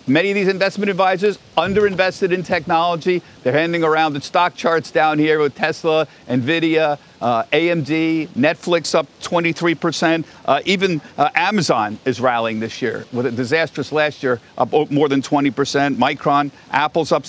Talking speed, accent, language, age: 155 wpm, American, English, 50-69